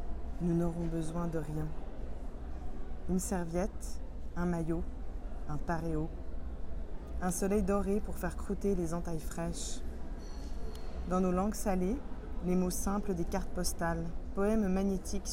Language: French